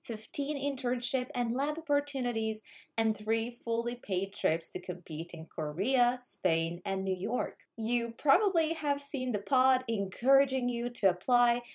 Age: 20-39